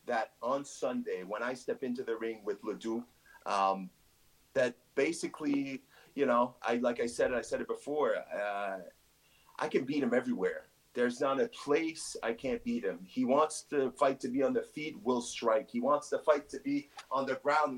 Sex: male